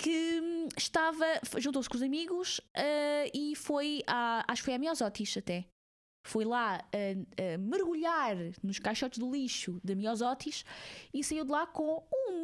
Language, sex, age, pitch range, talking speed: Portuguese, female, 20-39, 220-295 Hz, 160 wpm